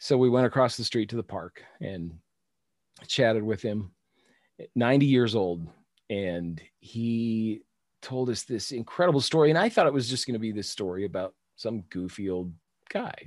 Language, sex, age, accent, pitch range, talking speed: English, male, 40-59, American, 100-125 Hz, 175 wpm